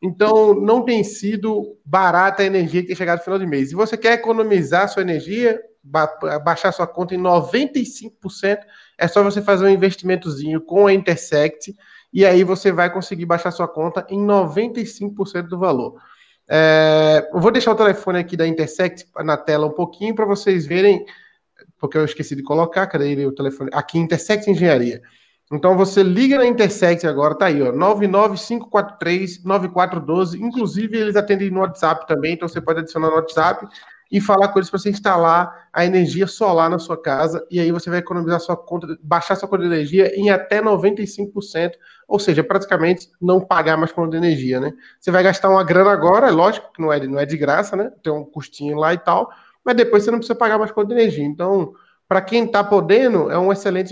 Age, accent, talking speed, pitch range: 20-39, Brazilian, 190 wpm, 165-205 Hz